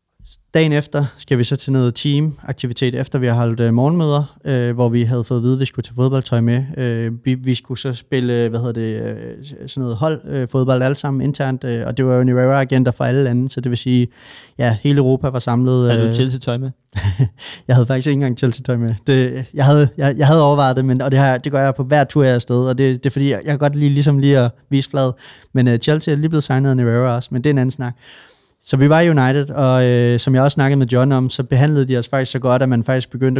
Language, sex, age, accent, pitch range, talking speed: Danish, male, 30-49, native, 125-140 Hz, 250 wpm